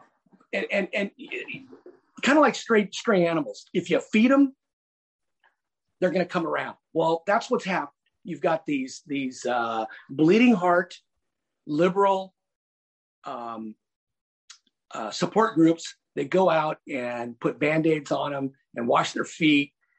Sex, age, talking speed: male, 40-59, 140 wpm